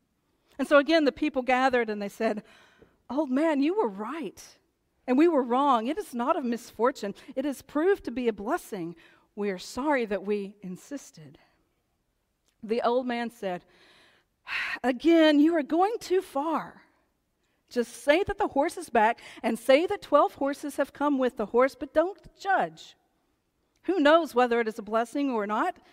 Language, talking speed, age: English, 175 wpm, 40-59